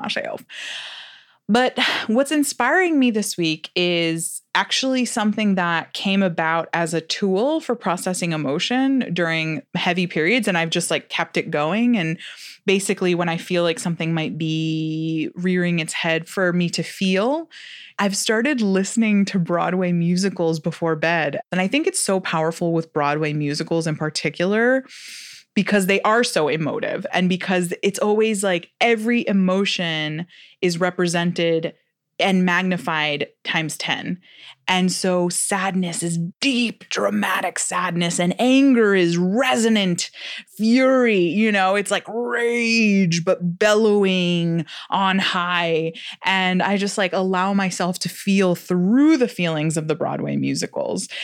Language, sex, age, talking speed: English, female, 20-39, 140 wpm